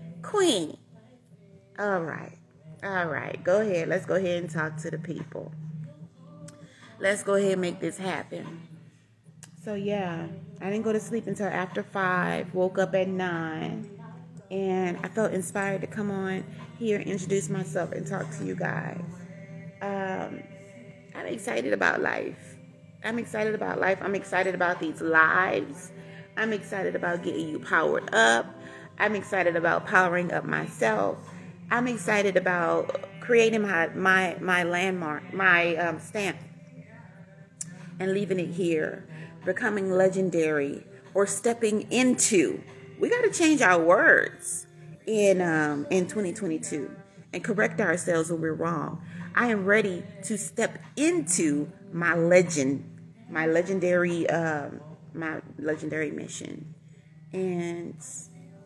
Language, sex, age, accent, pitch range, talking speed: English, female, 30-49, American, 160-195 Hz, 130 wpm